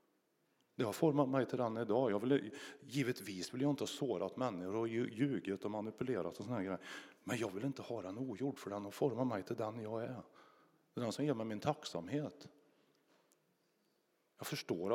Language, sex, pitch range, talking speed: Swedish, male, 115-150 Hz, 200 wpm